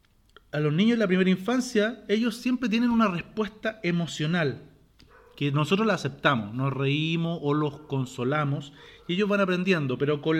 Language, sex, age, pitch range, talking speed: Spanish, male, 40-59, 140-195 Hz, 160 wpm